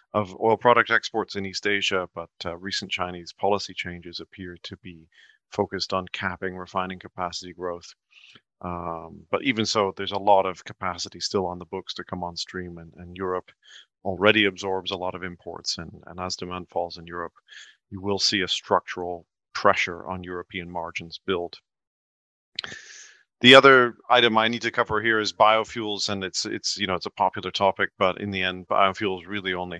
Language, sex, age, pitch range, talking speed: English, male, 40-59, 85-100 Hz, 185 wpm